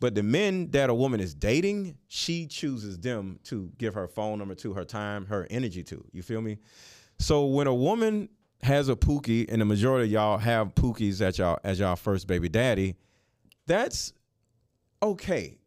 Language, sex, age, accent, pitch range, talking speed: English, male, 30-49, American, 105-145 Hz, 185 wpm